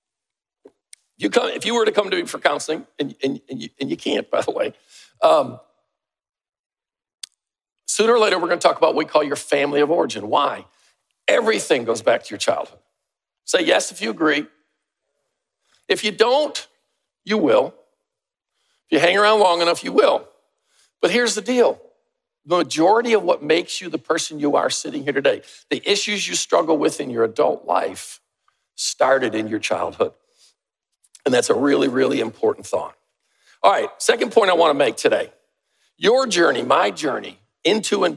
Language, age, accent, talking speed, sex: English, 50-69, American, 170 wpm, male